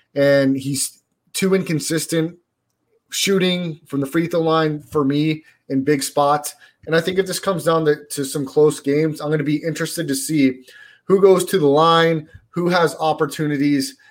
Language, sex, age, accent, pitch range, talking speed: English, male, 30-49, American, 140-160 Hz, 180 wpm